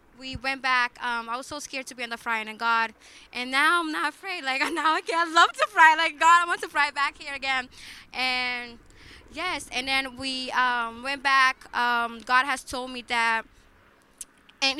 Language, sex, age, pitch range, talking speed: English, female, 10-29, 240-295 Hz, 205 wpm